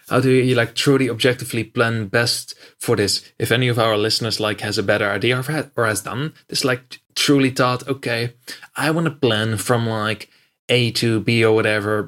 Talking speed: 205 wpm